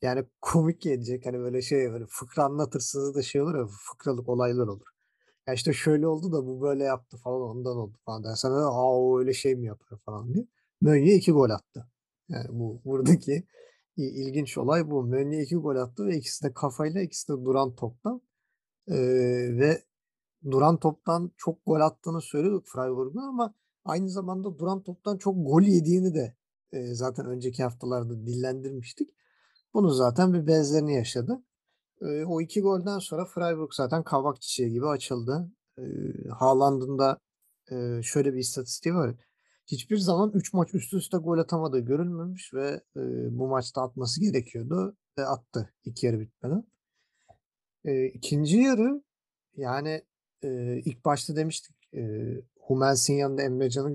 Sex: male